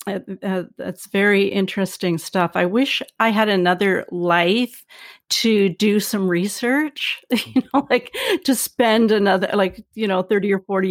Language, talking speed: English, 155 wpm